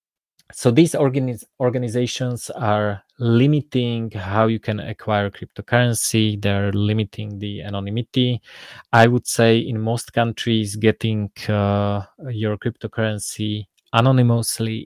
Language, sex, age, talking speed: English, male, 20-39, 100 wpm